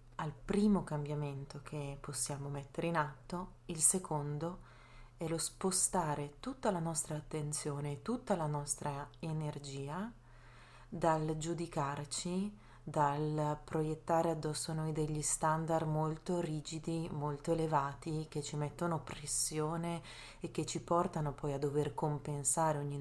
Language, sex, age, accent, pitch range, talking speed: Italian, female, 30-49, native, 140-175 Hz, 120 wpm